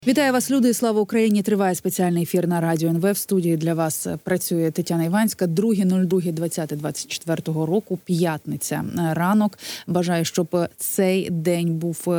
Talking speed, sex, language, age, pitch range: 135 wpm, female, Ukrainian, 20-39, 170-210 Hz